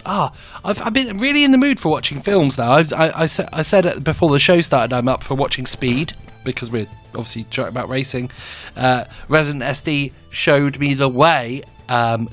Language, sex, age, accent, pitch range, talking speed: English, male, 30-49, British, 125-160 Hz, 195 wpm